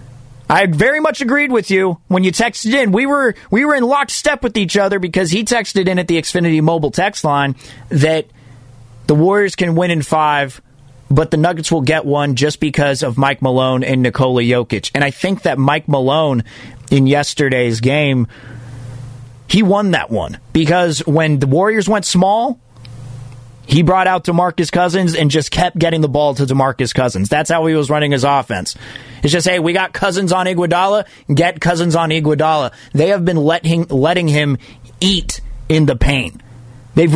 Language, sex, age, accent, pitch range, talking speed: English, male, 30-49, American, 125-175 Hz, 180 wpm